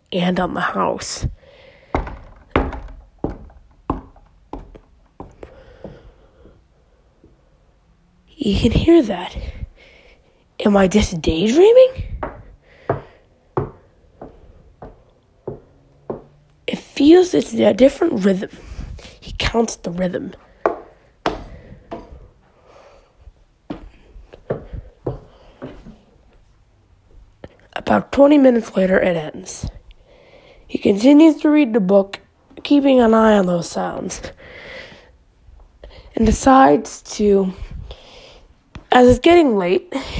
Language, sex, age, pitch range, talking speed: English, female, 20-39, 185-285 Hz, 70 wpm